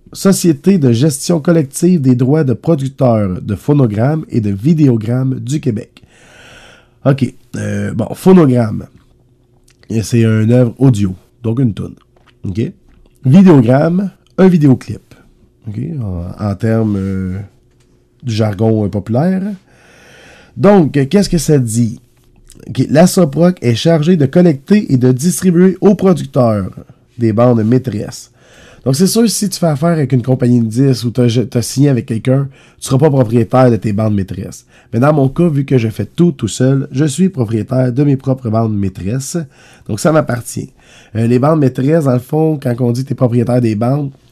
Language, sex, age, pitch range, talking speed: French, male, 30-49, 115-145 Hz, 165 wpm